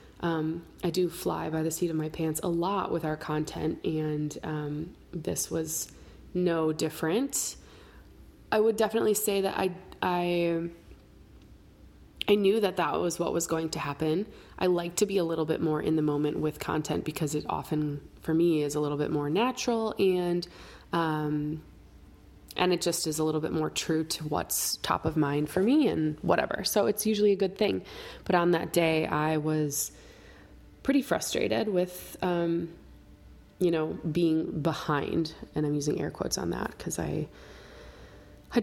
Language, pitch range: English, 155-180 Hz